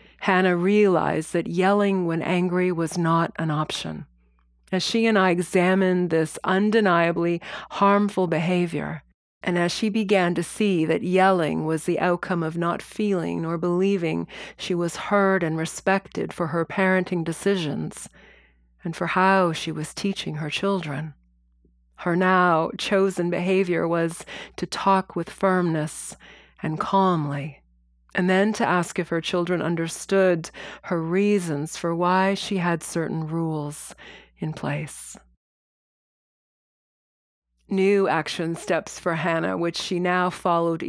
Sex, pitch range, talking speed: female, 160-190 Hz, 130 wpm